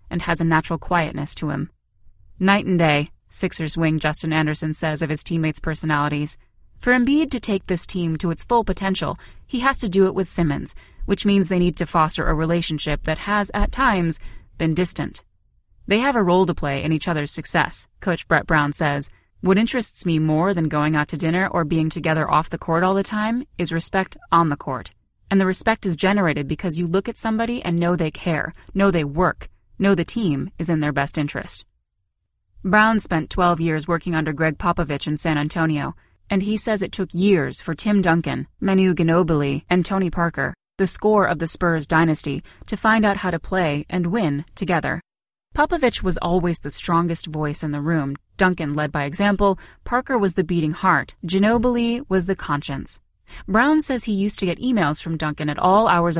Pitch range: 155-195 Hz